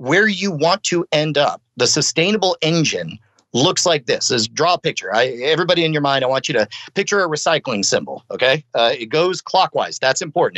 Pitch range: 125-155 Hz